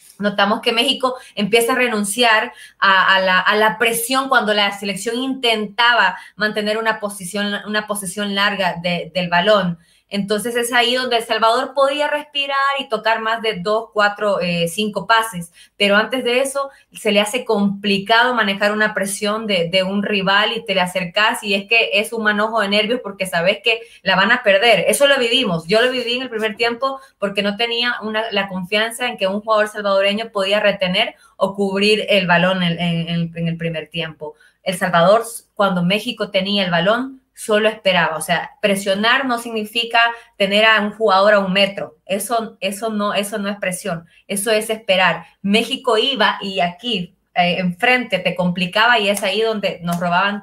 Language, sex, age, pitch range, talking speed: Spanish, female, 20-39, 190-225 Hz, 185 wpm